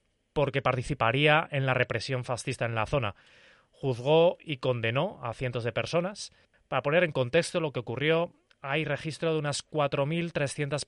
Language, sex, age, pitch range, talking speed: Spanish, male, 20-39, 120-150 Hz, 155 wpm